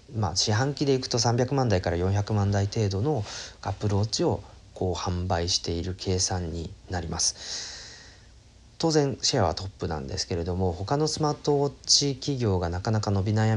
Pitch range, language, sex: 90-110 Hz, Japanese, male